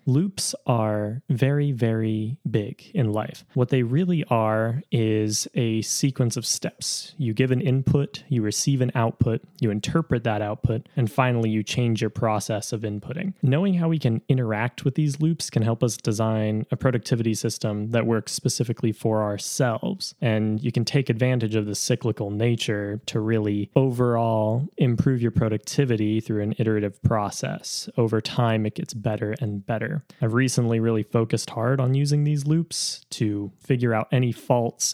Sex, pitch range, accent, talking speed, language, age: male, 110-135 Hz, American, 165 wpm, English, 20-39